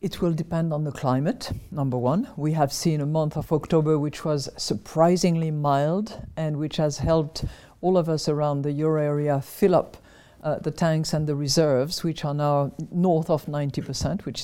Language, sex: English, female